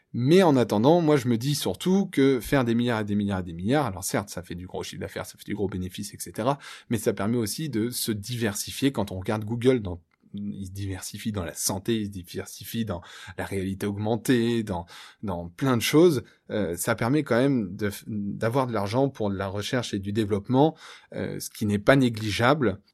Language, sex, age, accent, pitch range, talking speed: French, male, 20-39, French, 100-135 Hz, 220 wpm